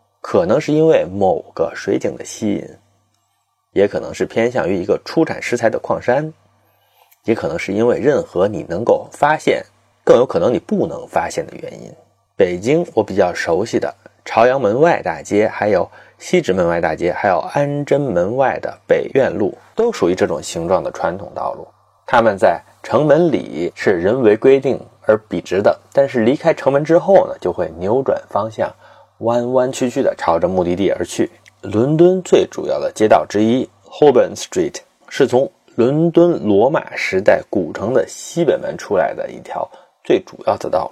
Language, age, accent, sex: Chinese, 30-49, native, male